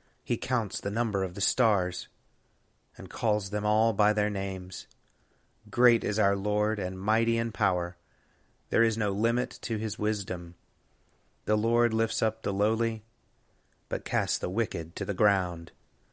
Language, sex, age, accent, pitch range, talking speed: English, male, 30-49, American, 100-115 Hz, 155 wpm